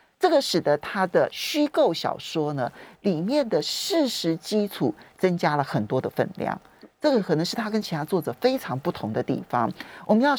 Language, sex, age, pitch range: Chinese, male, 40-59, 150-230 Hz